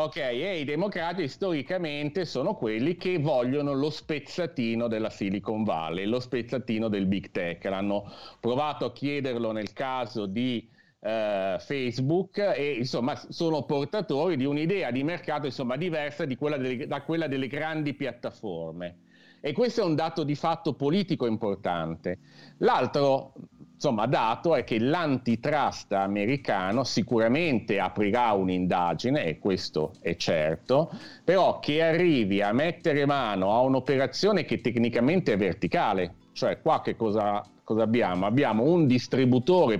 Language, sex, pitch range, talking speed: Italian, male, 105-150 Hz, 135 wpm